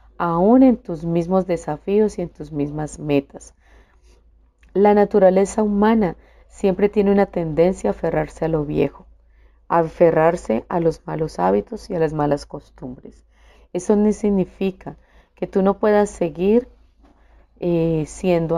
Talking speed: 140 wpm